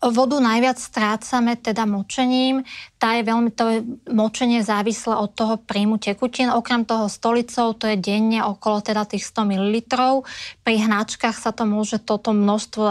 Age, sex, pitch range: 20-39, female, 205-235 Hz